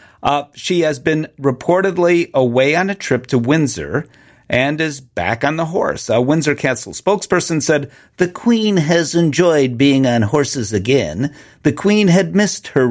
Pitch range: 125-175 Hz